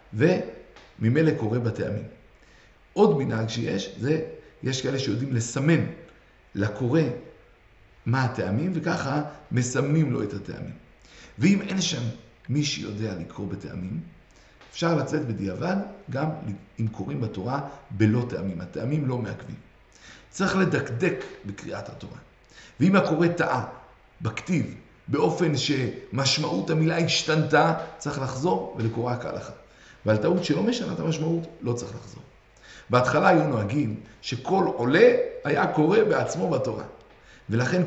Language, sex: Hebrew, male